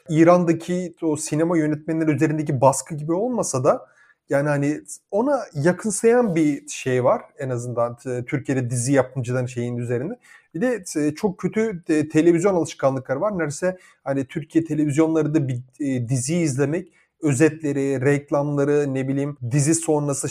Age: 30-49